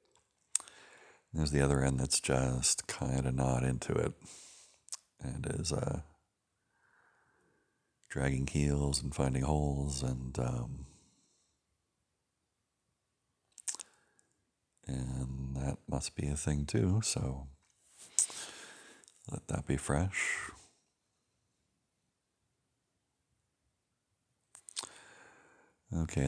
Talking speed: 80 wpm